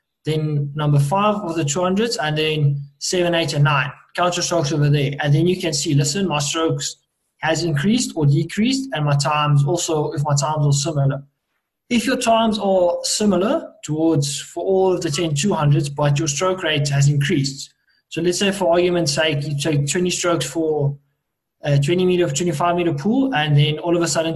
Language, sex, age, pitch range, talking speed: English, male, 20-39, 145-175 Hz, 190 wpm